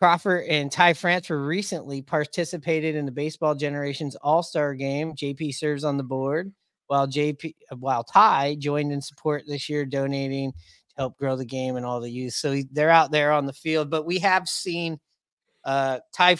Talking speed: 180 wpm